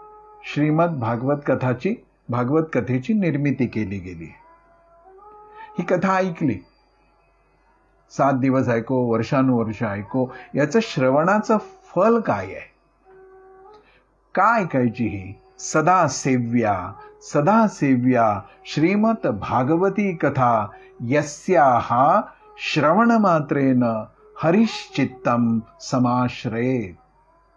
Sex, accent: male, native